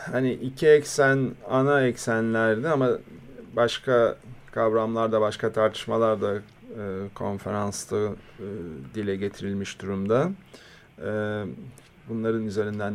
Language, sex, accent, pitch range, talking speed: Turkish, male, native, 105-130 Hz, 90 wpm